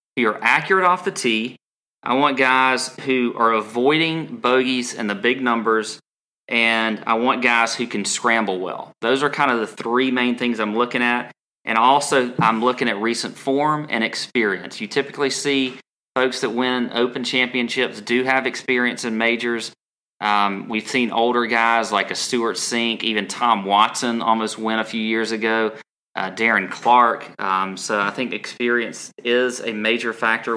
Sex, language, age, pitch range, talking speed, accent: male, English, 30-49, 110-130 Hz, 175 wpm, American